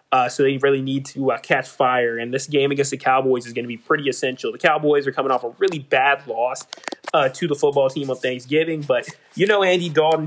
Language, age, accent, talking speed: English, 20-39, American, 245 wpm